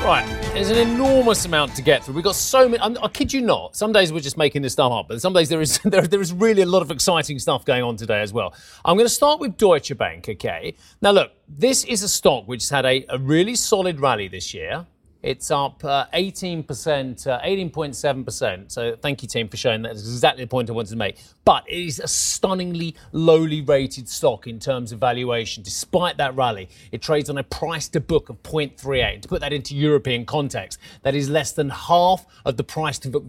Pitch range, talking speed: 130-180 Hz, 225 wpm